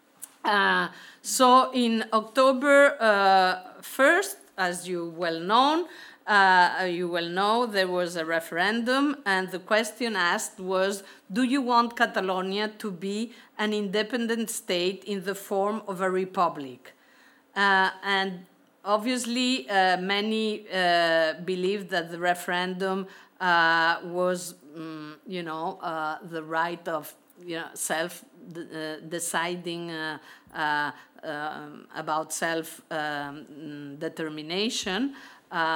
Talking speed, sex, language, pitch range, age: 110 wpm, female, German, 165-215 Hz, 50-69